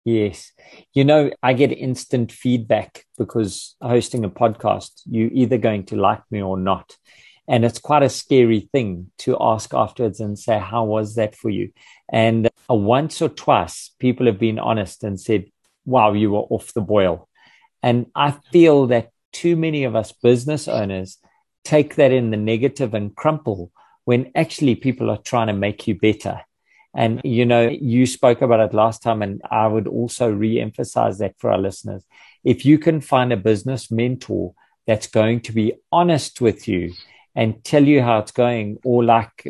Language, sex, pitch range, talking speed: English, male, 110-130 Hz, 180 wpm